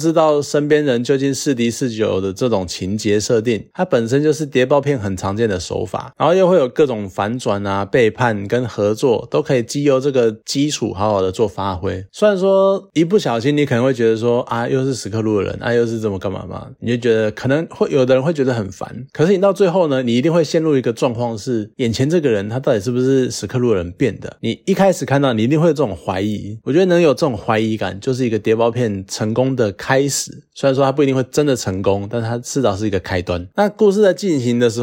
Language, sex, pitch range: Chinese, male, 110-140 Hz